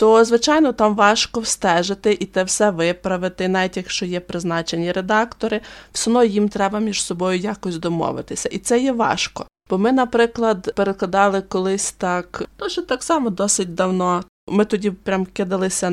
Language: Ukrainian